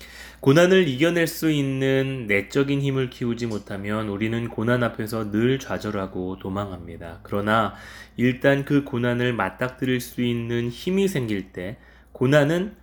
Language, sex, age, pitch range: Korean, male, 20-39, 100-140 Hz